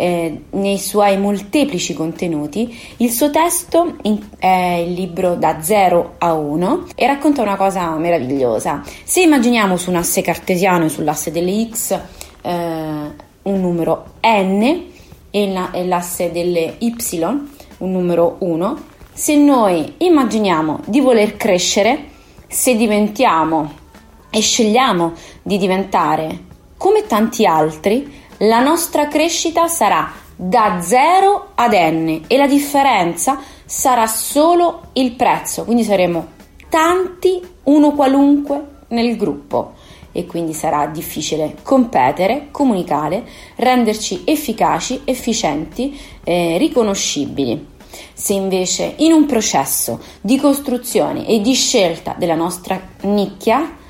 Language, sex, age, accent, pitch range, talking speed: Italian, female, 30-49, native, 175-265 Hz, 115 wpm